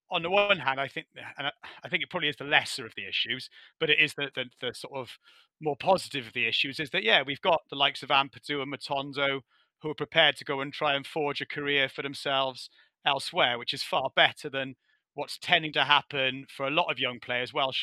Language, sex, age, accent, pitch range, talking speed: English, male, 30-49, British, 125-155 Hz, 240 wpm